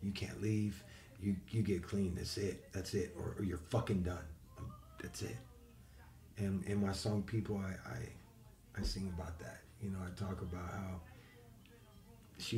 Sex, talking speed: male, 170 wpm